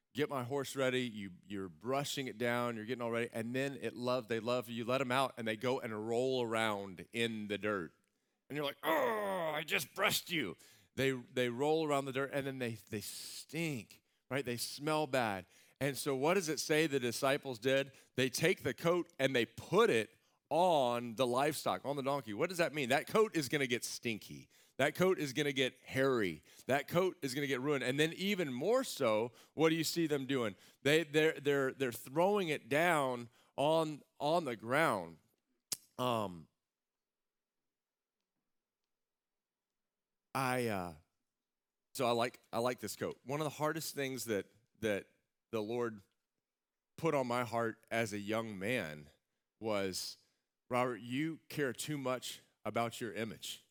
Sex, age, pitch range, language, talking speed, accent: male, 40-59, 115-145 Hz, English, 175 wpm, American